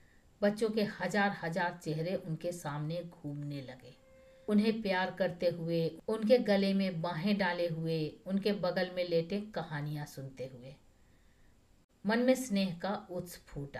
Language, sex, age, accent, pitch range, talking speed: Hindi, female, 50-69, native, 155-210 Hz, 140 wpm